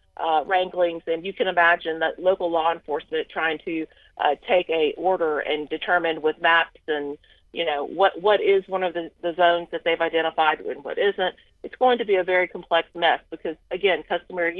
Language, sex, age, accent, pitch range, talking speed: English, female, 40-59, American, 160-225 Hz, 195 wpm